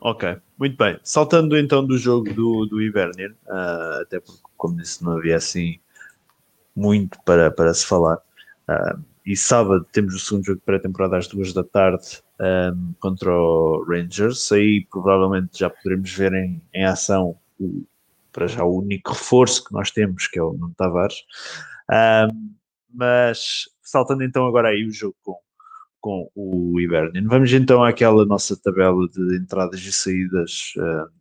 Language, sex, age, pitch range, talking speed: Portuguese, male, 20-39, 90-110 Hz, 160 wpm